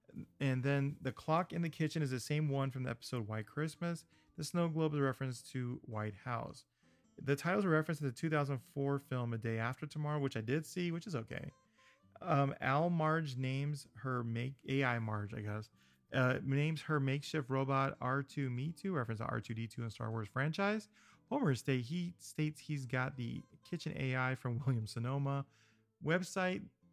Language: English